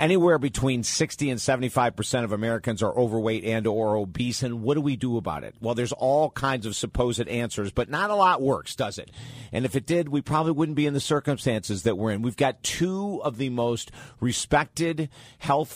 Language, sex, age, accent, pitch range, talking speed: English, male, 50-69, American, 115-135 Hz, 210 wpm